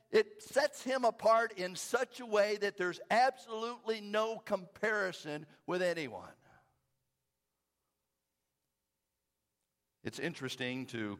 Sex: male